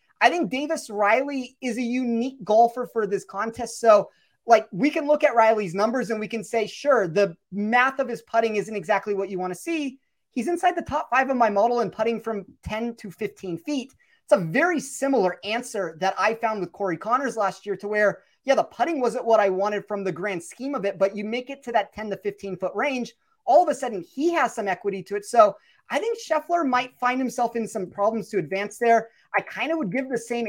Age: 30-49